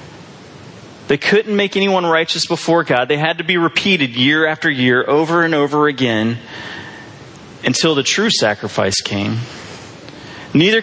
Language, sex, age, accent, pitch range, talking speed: English, male, 30-49, American, 150-205 Hz, 140 wpm